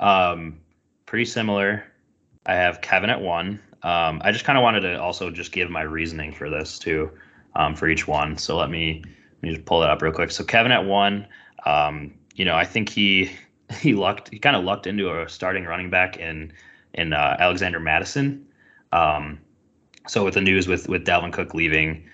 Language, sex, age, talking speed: English, male, 20-39, 200 wpm